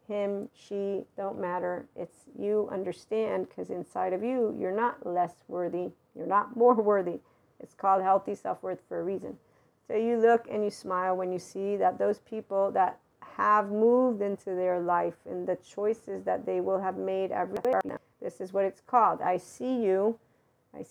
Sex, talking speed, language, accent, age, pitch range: female, 180 wpm, English, American, 40-59, 190-220 Hz